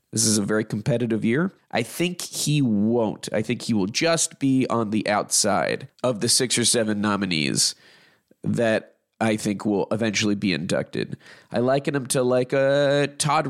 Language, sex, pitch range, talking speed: English, male, 110-145 Hz, 175 wpm